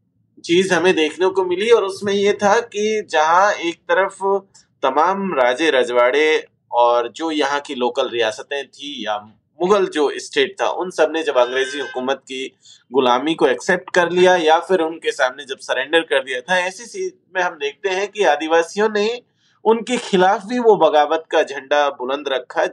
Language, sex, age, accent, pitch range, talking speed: Hindi, male, 30-49, native, 145-210 Hz, 170 wpm